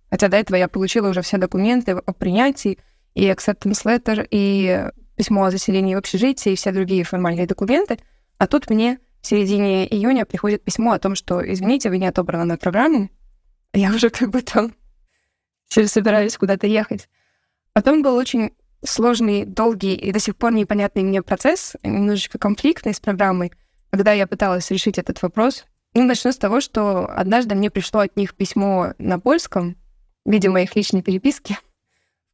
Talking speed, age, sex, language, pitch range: 170 wpm, 20-39, female, Russian, 190-225 Hz